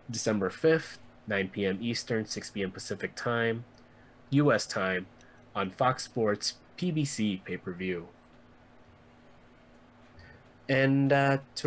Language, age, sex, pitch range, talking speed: English, 20-39, male, 95-120 Hz, 100 wpm